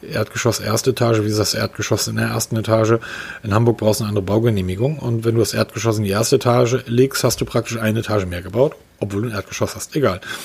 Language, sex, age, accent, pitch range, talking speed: German, male, 40-59, German, 110-135 Hz, 235 wpm